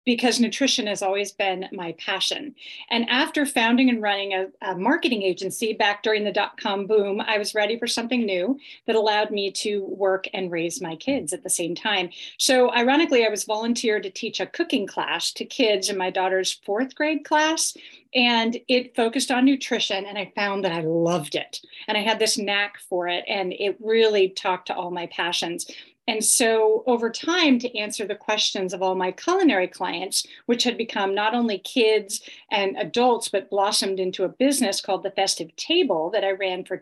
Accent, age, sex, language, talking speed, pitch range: American, 30-49, female, English, 195 wpm, 190-240 Hz